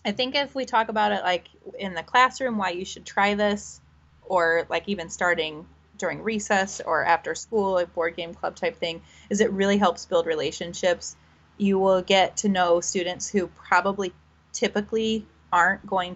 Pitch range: 165-200 Hz